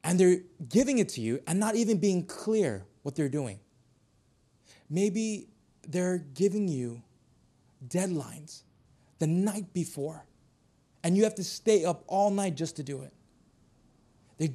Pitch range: 125-190 Hz